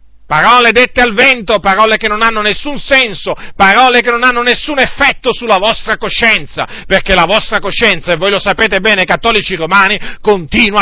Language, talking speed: Italian, 170 wpm